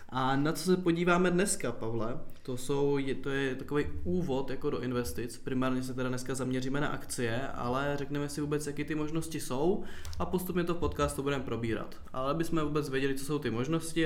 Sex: male